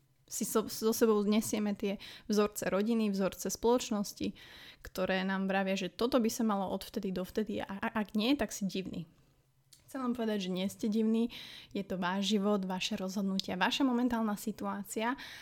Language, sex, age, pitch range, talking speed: Slovak, female, 20-39, 195-225 Hz, 180 wpm